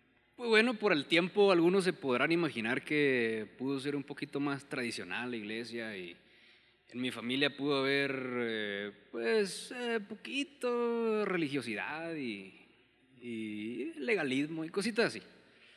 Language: Spanish